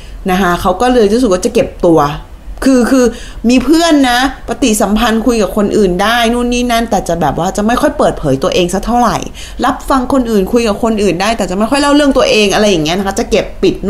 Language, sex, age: Thai, female, 20-39